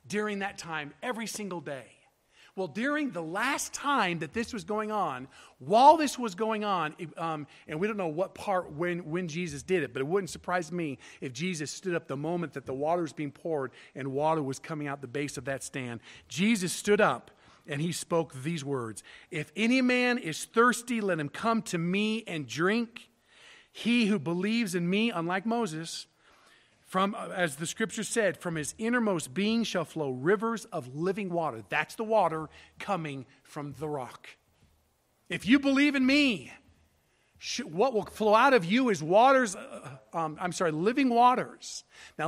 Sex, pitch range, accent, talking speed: male, 150-215 Hz, American, 180 wpm